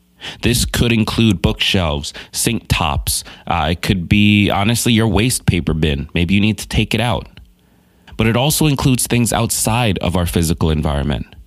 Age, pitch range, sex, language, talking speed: 20-39, 85-110 Hz, male, English, 165 wpm